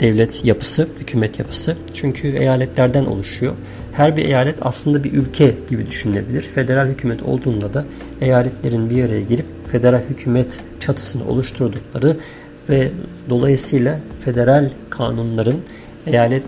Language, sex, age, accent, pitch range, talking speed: Turkish, male, 50-69, native, 110-140 Hz, 115 wpm